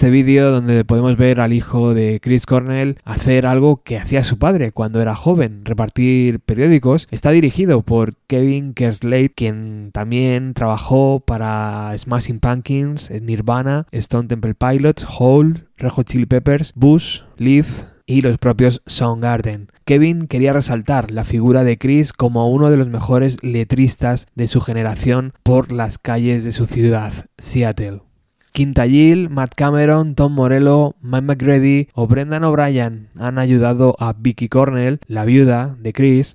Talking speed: 145 wpm